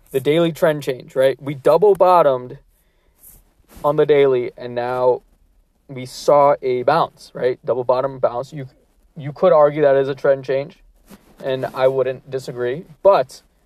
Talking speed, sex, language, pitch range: 155 wpm, male, English, 130-170 Hz